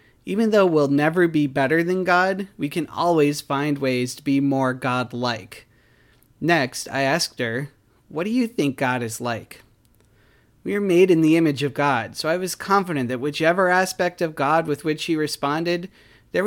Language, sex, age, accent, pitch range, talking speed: English, male, 30-49, American, 130-165 Hz, 180 wpm